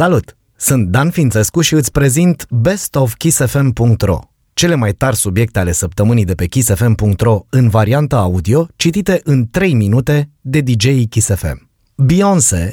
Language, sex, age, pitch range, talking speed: Romanian, male, 30-49, 105-140 Hz, 140 wpm